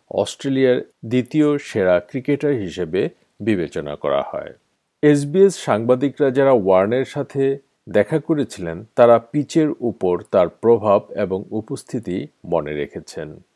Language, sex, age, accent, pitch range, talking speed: Bengali, male, 50-69, native, 125-160 Hz, 90 wpm